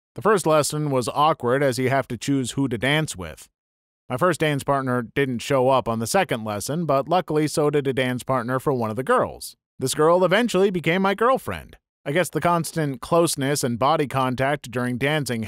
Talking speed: 205 wpm